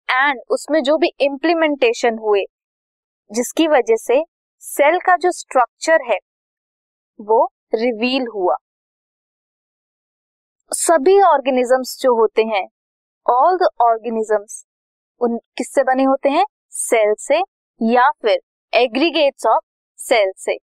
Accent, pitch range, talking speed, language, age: native, 240-325 Hz, 105 wpm, Hindi, 20-39